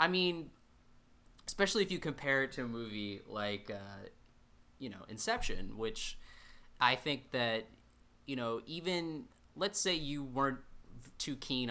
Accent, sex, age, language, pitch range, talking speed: American, male, 20-39, English, 115-140 Hz, 145 wpm